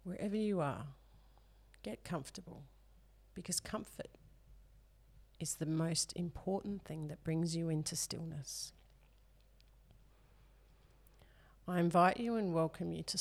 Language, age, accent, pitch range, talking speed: English, 40-59, Australian, 120-175 Hz, 110 wpm